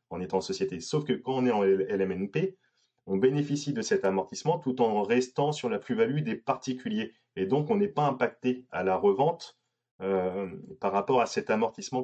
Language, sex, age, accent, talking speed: French, male, 30-49, French, 190 wpm